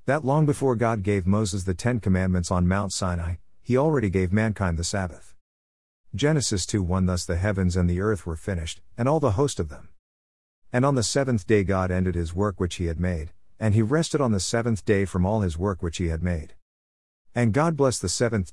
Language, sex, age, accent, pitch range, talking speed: English, male, 50-69, American, 85-120 Hz, 215 wpm